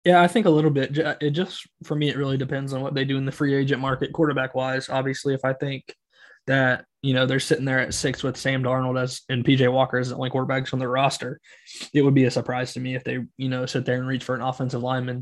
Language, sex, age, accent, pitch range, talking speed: English, male, 20-39, American, 130-140 Hz, 270 wpm